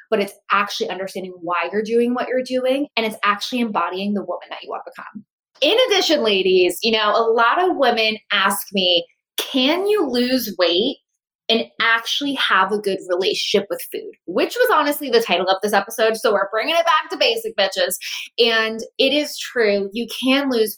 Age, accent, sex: 20-39, American, female